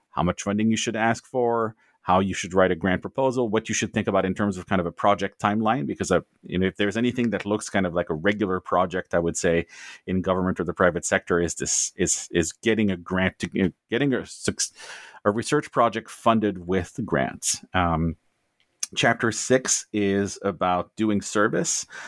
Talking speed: 205 wpm